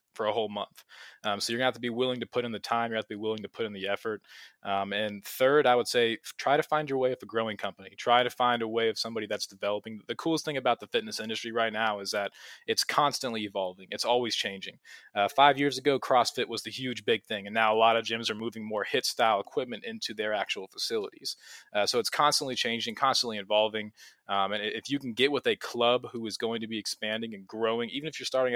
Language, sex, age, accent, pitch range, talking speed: English, male, 20-39, American, 105-125 Hz, 255 wpm